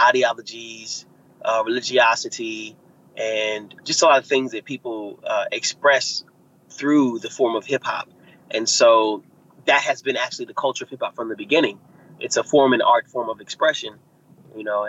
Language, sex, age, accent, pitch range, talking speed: English, male, 30-49, American, 110-175 Hz, 165 wpm